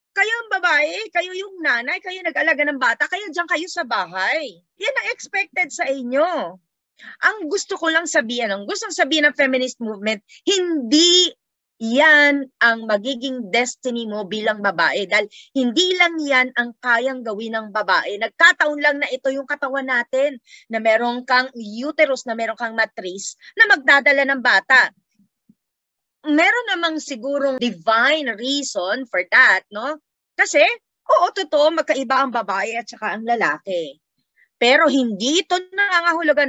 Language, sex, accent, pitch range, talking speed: English, female, Filipino, 240-335 Hz, 150 wpm